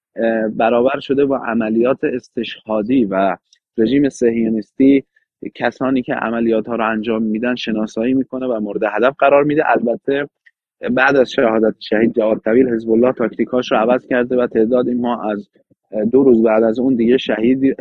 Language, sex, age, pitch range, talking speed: Persian, male, 30-49, 115-135 Hz, 155 wpm